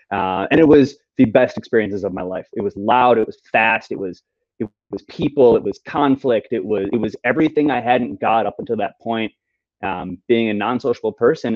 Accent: American